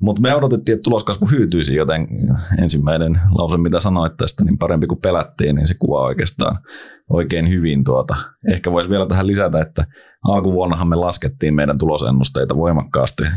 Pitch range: 70-95 Hz